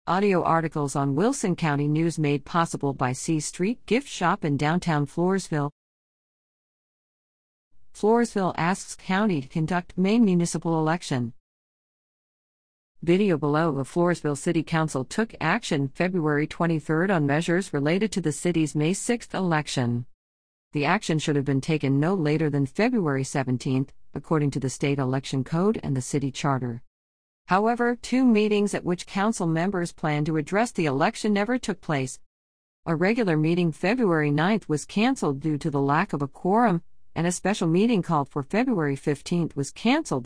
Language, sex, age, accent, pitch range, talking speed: English, female, 50-69, American, 140-185 Hz, 155 wpm